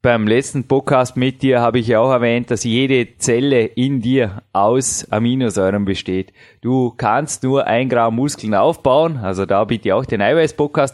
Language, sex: German, male